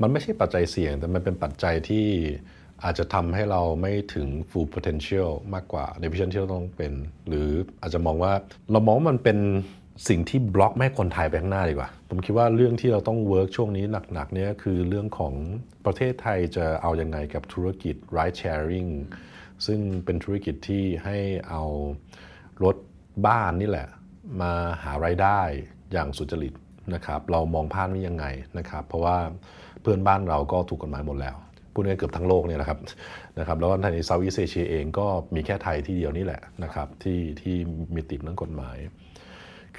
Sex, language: male, Thai